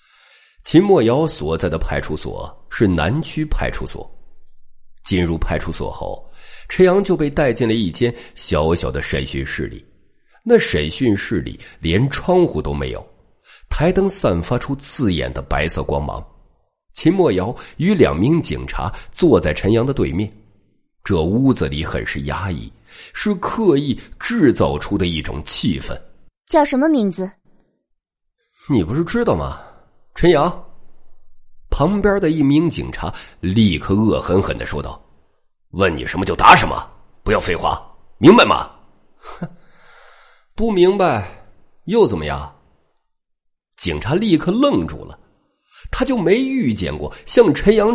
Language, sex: Chinese, male